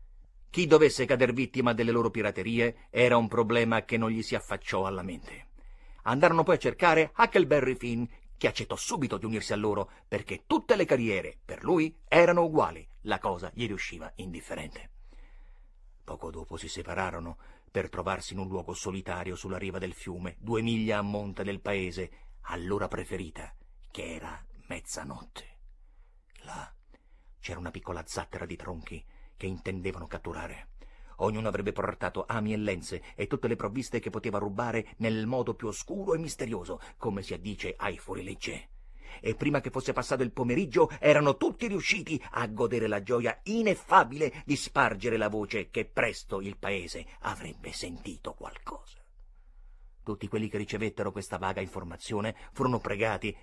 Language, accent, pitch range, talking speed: Italian, native, 95-120 Hz, 155 wpm